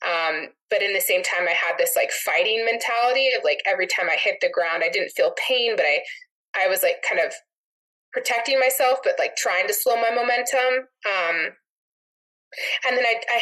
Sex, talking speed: female, 200 wpm